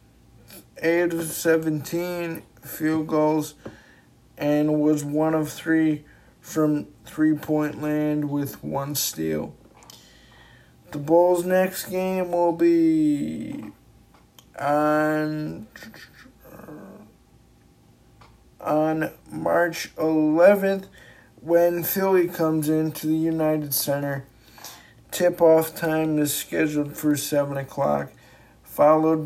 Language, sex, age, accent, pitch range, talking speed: English, male, 50-69, American, 145-165 Hz, 85 wpm